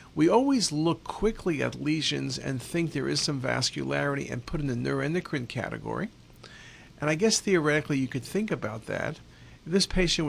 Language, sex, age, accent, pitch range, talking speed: English, male, 50-69, American, 130-160 Hz, 175 wpm